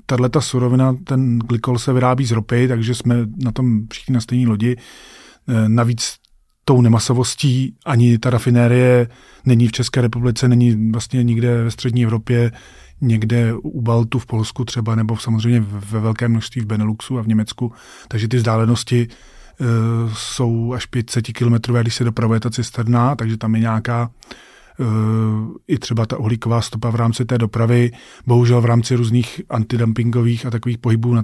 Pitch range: 115-125 Hz